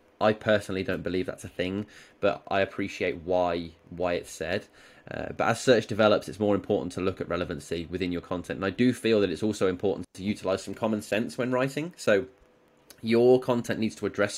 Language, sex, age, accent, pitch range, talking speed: English, male, 20-39, British, 95-115 Hz, 210 wpm